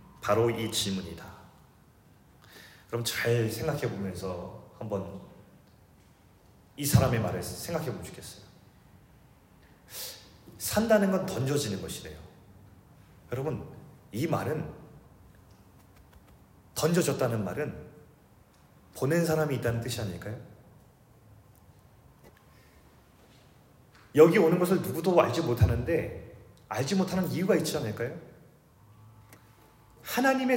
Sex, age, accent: male, 30-49, native